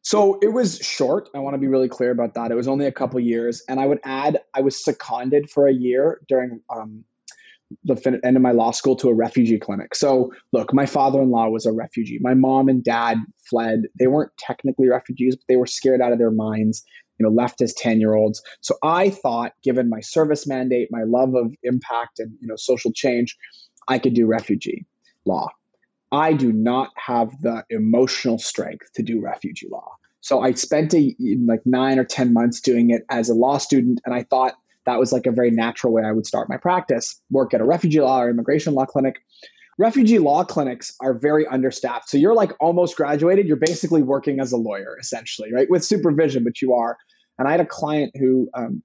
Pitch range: 120-140 Hz